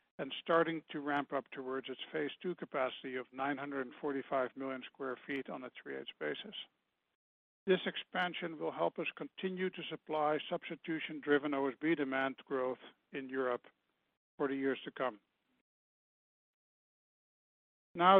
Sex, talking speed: male, 130 wpm